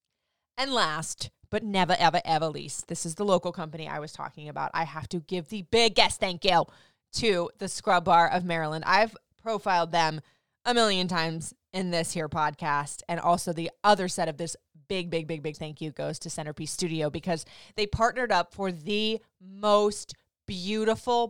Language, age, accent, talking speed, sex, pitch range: English, 20-39, American, 185 wpm, female, 160-205 Hz